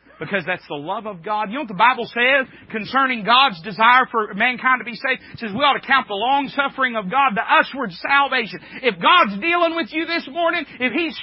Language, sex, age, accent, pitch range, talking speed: English, male, 40-59, American, 195-310 Hz, 230 wpm